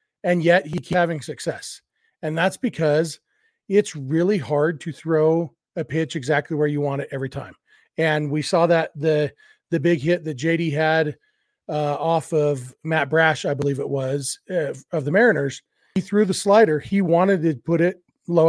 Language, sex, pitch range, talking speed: English, male, 150-180 Hz, 185 wpm